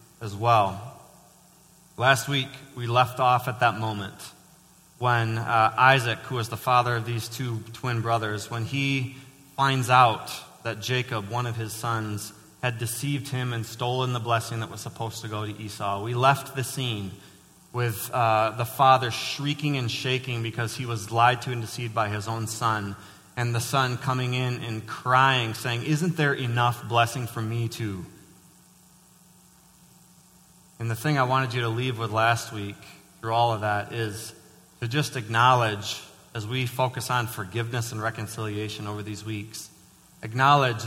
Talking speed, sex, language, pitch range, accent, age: 165 wpm, male, English, 110-130 Hz, American, 30-49